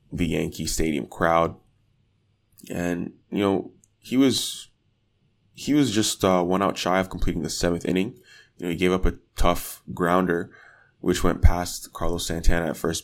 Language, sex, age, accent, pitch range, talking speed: English, male, 20-39, American, 85-105 Hz, 165 wpm